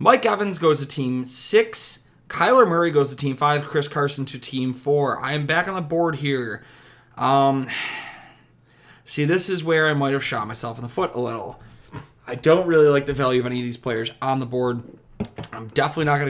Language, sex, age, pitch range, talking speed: English, male, 30-49, 125-150 Hz, 210 wpm